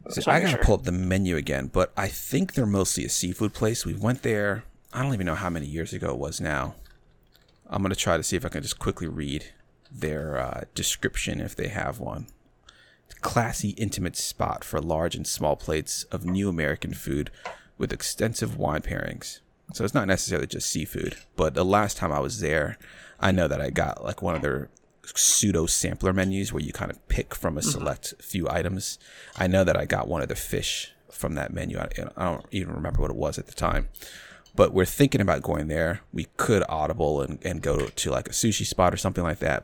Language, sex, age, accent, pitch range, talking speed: English, male, 30-49, American, 80-100 Hz, 225 wpm